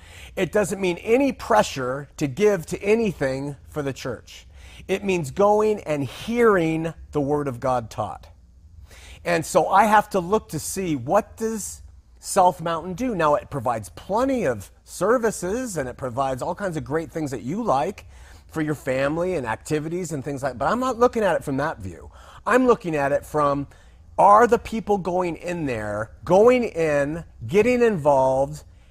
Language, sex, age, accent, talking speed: English, male, 40-59, American, 175 wpm